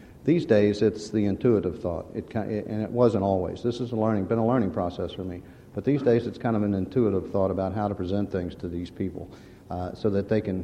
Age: 50-69